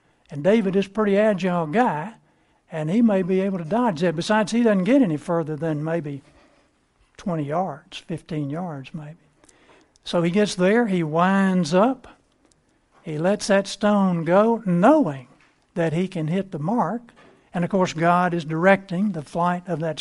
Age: 60-79